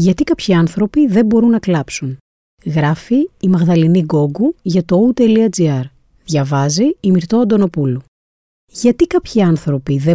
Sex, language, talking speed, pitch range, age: female, Greek, 130 wpm, 150-220 Hz, 30-49